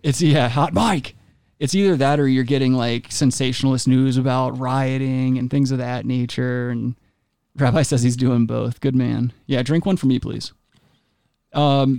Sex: male